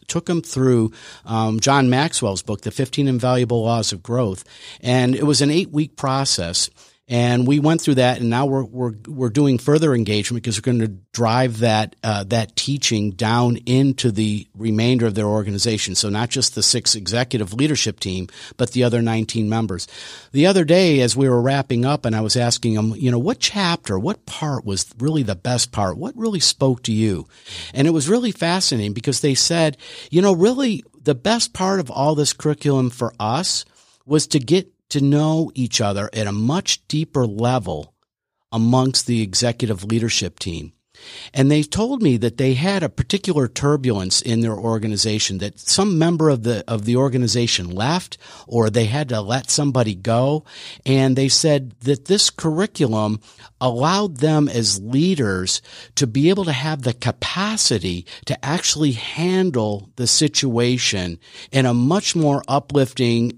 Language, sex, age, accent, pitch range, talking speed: English, male, 50-69, American, 115-150 Hz, 175 wpm